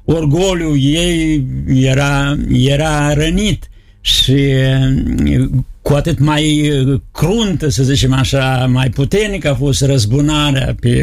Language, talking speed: Romanian, 105 wpm